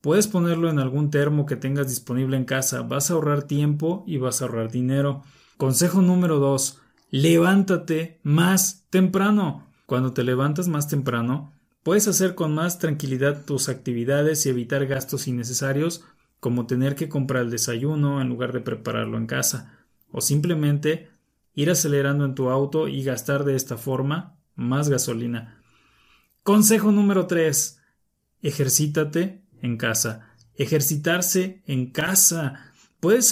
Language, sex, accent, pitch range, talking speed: Spanish, male, Mexican, 130-165 Hz, 140 wpm